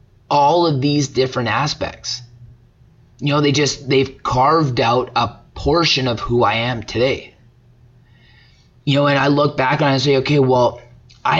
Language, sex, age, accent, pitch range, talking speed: English, male, 20-39, American, 120-140 Hz, 165 wpm